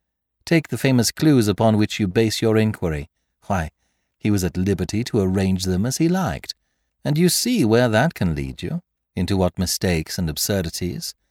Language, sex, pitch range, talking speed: English, male, 80-120 Hz, 180 wpm